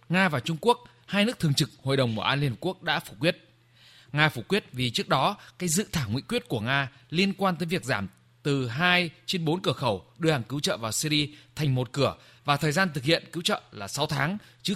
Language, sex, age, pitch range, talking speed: Vietnamese, male, 20-39, 125-175 Hz, 250 wpm